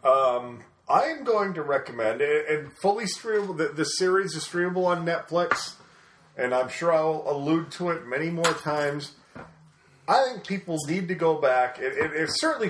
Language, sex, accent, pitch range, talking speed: English, male, American, 145-185 Hz, 170 wpm